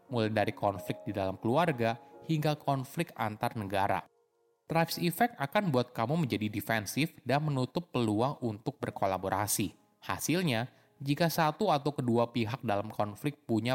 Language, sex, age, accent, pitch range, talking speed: Indonesian, male, 20-39, native, 105-145 Hz, 135 wpm